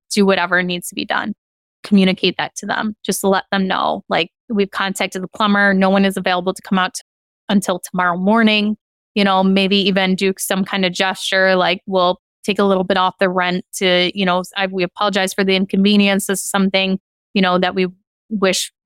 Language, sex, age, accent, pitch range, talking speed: English, female, 20-39, American, 185-205 Hz, 210 wpm